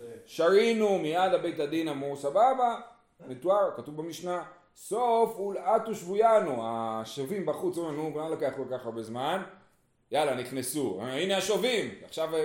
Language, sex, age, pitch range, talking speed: Hebrew, male, 30-49, 130-195 Hz, 135 wpm